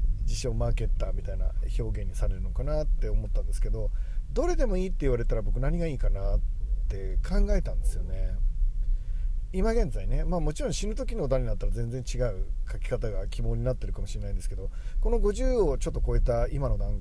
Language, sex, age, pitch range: Japanese, male, 40-59, 100-160 Hz